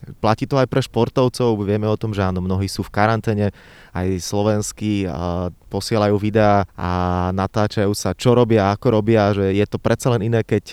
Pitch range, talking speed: 105-125 Hz, 180 wpm